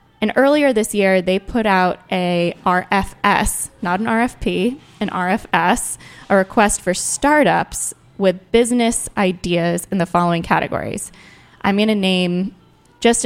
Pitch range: 175-215 Hz